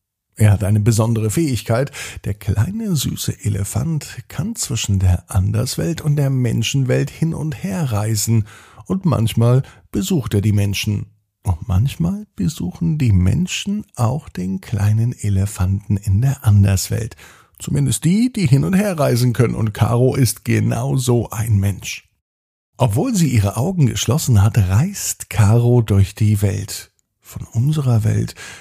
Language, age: German, 50-69